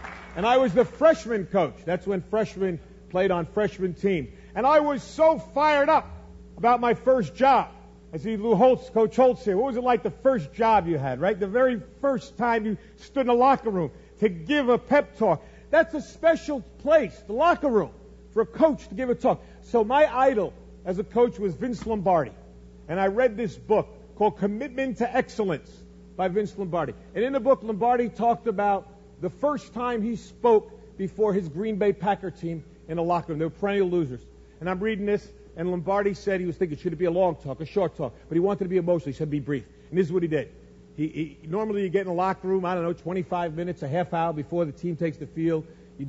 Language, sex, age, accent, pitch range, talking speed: English, male, 50-69, American, 155-225 Hz, 225 wpm